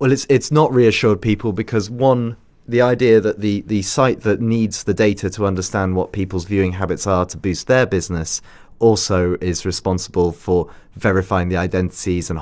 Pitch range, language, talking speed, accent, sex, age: 90-110 Hz, English, 180 wpm, British, male, 30-49